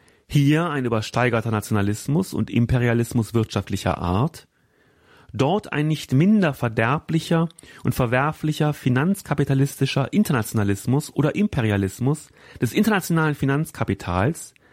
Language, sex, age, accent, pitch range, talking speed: German, male, 30-49, German, 105-150 Hz, 90 wpm